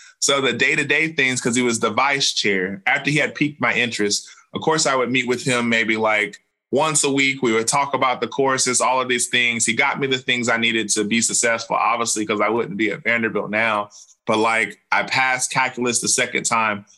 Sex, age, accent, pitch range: male, 20-39, American, 115-135 Hz